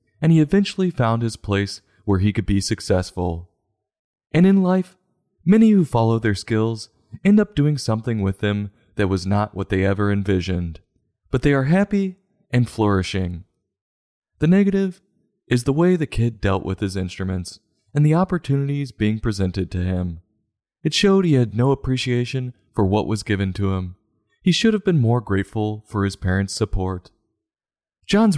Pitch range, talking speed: 95-140 Hz, 165 wpm